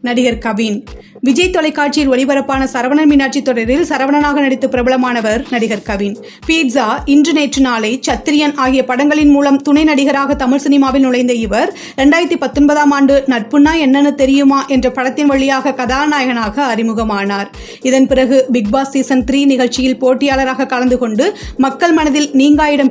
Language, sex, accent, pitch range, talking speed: Tamil, female, native, 250-280 Hz, 125 wpm